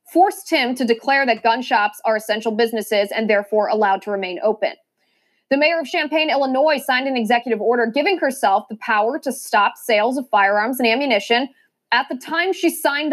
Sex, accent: female, American